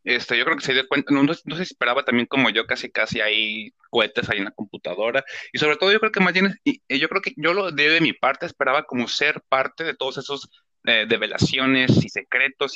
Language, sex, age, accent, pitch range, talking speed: Spanish, male, 30-49, Mexican, 125-170 Hz, 230 wpm